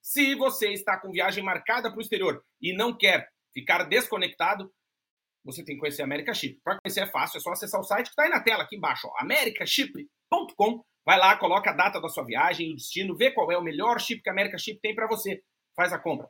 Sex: male